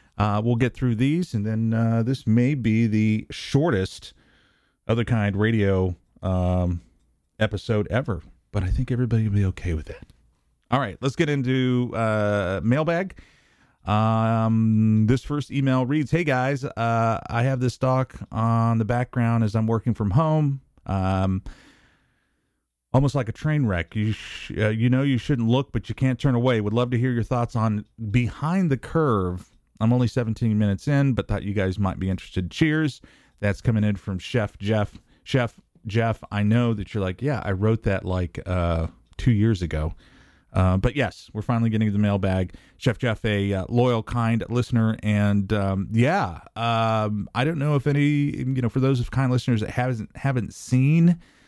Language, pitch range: English, 100-125 Hz